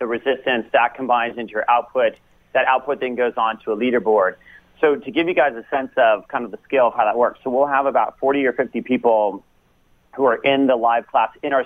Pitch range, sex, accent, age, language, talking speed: 110-130 Hz, male, American, 40-59, English, 240 wpm